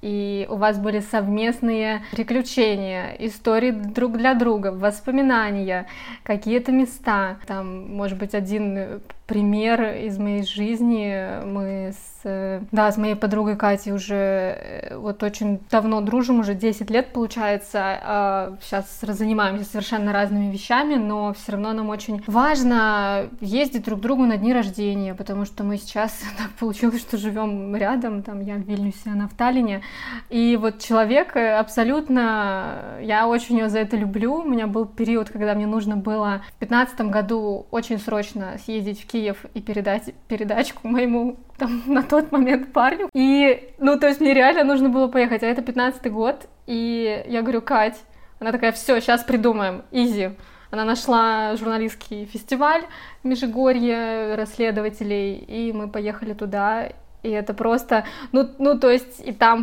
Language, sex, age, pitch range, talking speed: Russian, female, 20-39, 205-240 Hz, 150 wpm